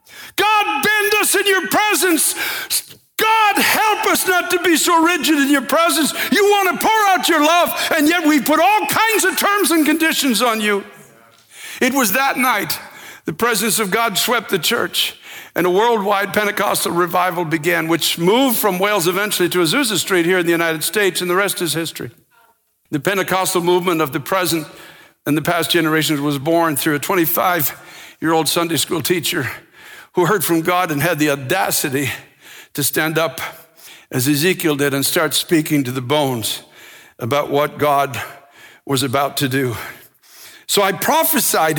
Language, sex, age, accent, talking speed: English, male, 60-79, American, 170 wpm